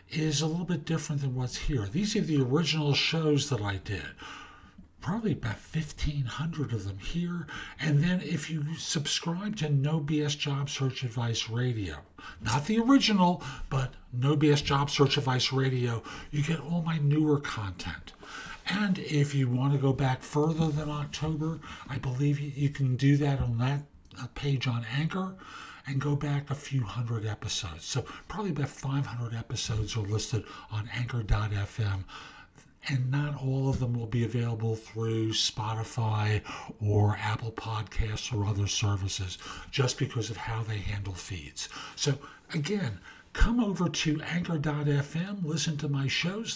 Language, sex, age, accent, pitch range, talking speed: English, male, 50-69, American, 115-155 Hz, 155 wpm